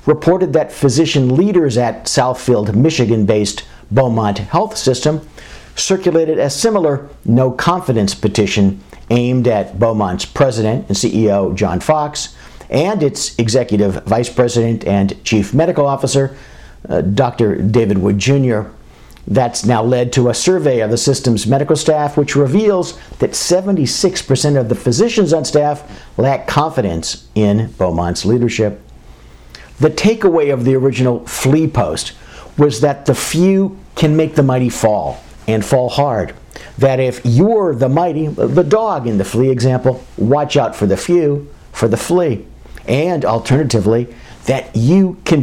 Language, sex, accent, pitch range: English, male, American, 110-150 Hz